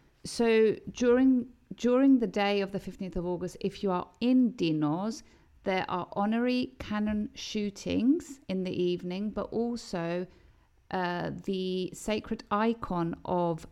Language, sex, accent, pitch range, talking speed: Greek, female, British, 170-205 Hz, 130 wpm